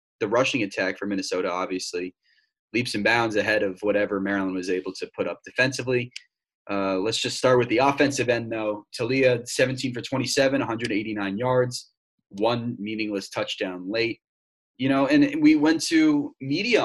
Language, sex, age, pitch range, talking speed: English, male, 20-39, 105-140 Hz, 160 wpm